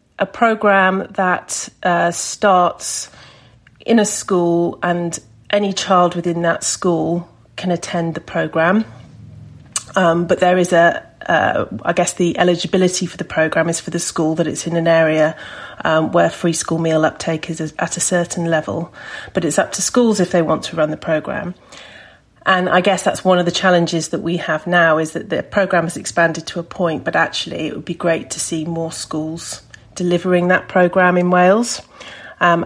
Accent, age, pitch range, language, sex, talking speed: British, 40-59, 160-180 Hz, English, female, 180 wpm